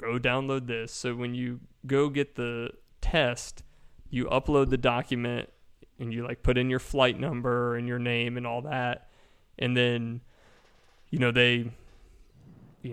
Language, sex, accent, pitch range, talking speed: English, male, American, 120-130 Hz, 160 wpm